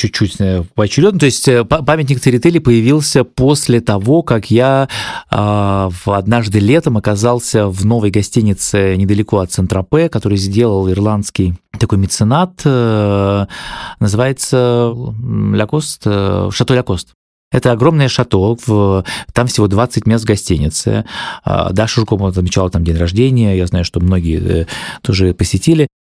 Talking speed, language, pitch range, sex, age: 115 wpm, Russian, 95-120 Hz, male, 30-49